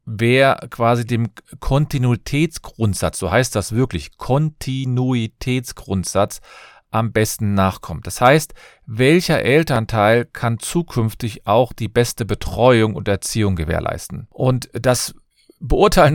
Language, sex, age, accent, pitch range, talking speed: German, male, 40-59, German, 110-135 Hz, 105 wpm